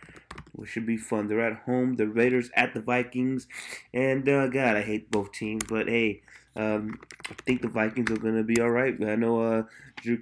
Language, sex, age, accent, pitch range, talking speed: English, male, 20-39, American, 115-135 Hz, 205 wpm